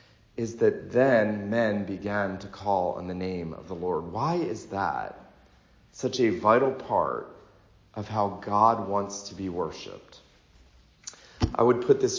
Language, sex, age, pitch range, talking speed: English, male, 30-49, 105-130 Hz, 155 wpm